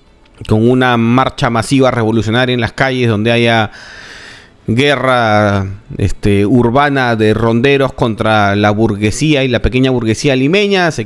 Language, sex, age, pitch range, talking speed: Spanish, male, 30-49, 110-145 Hz, 130 wpm